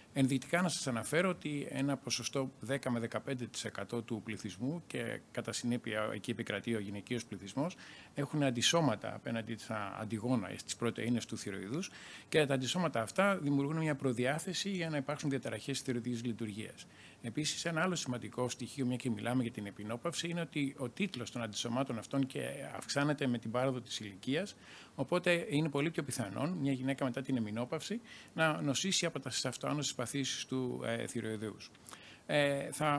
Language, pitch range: Greek, 115-145 Hz